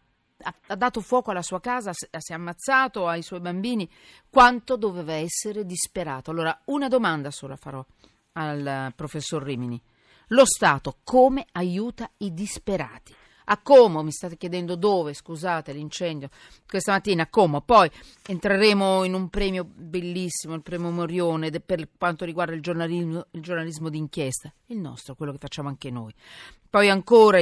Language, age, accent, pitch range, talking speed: Italian, 40-59, native, 145-195 Hz, 150 wpm